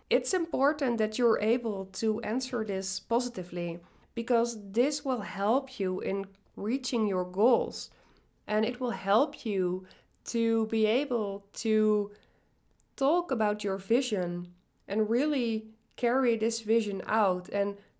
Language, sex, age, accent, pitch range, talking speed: English, female, 20-39, Dutch, 190-240 Hz, 125 wpm